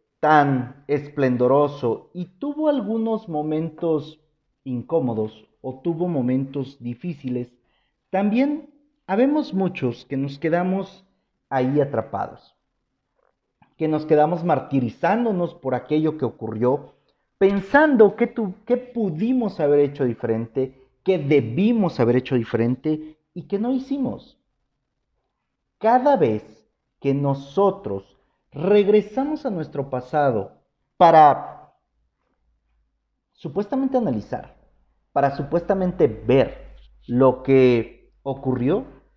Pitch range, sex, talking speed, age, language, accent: 130-195 Hz, male, 95 wpm, 40-59, Spanish, Mexican